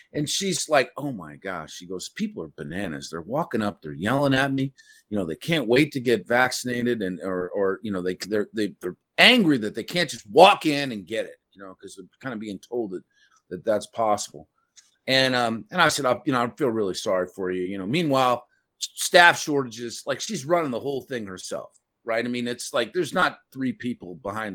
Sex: male